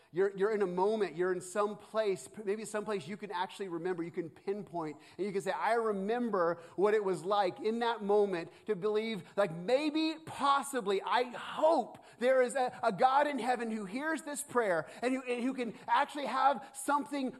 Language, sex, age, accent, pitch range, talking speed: Ukrainian, male, 30-49, American, 205-270 Hz, 200 wpm